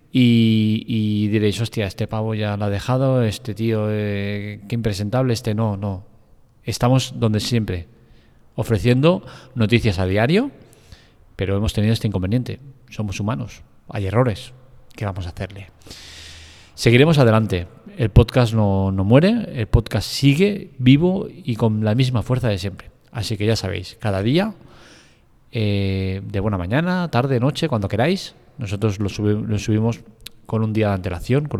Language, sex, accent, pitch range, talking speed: Spanish, male, Spanish, 105-125 Hz, 150 wpm